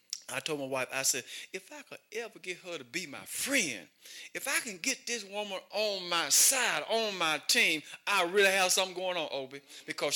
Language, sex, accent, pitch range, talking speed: English, male, American, 125-190 Hz, 215 wpm